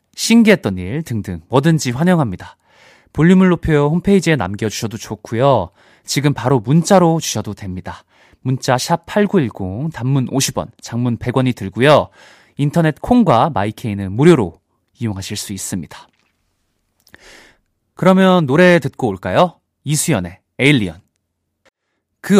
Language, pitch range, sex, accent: Korean, 100-160 Hz, male, native